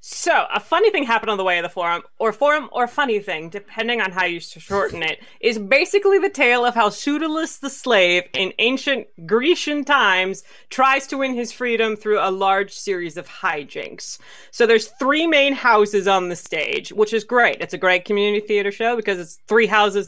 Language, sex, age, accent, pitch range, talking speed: English, female, 30-49, American, 190-270 Hz, 200 wpm